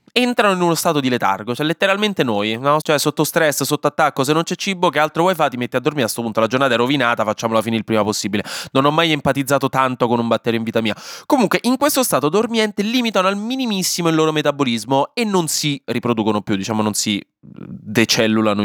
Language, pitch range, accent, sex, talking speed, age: Italian, 115-180 Hz, native, male, 225 wpm, 20-39